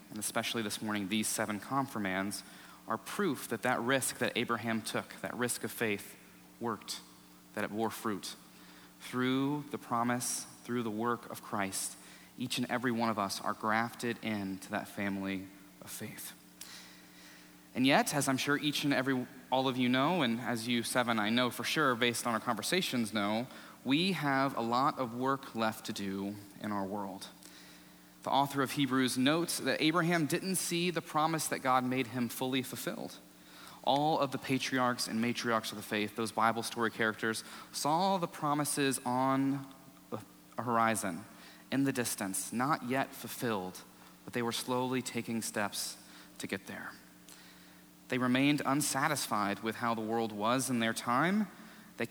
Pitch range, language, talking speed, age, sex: 100-130 Hz, English, 165 wpm, 30-49, male